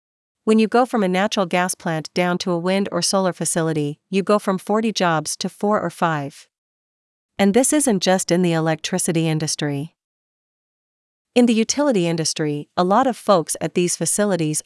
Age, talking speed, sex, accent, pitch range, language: 40-59, 175 wpm, female, American, 165-205 Hz, English